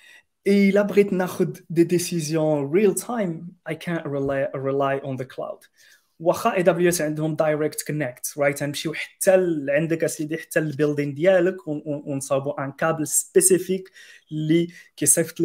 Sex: male